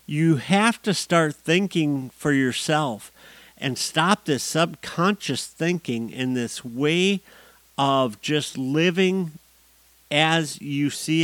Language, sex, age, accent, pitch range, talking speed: English, male, 50-69, American, 120-155 Hz, 110 wpm